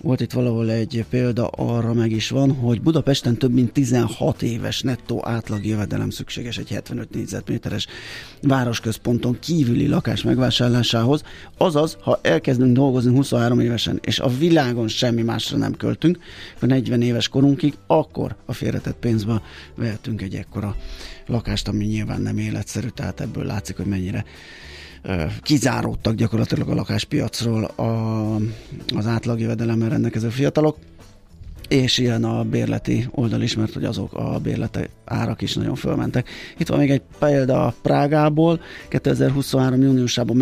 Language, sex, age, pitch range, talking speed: Hungarian, male, 30-49, 110-130 Hz, 140 wpm